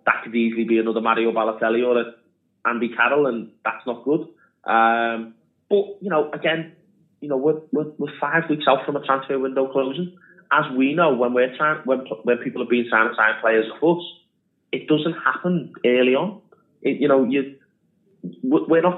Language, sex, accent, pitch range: English, male, British, 115-155 Hz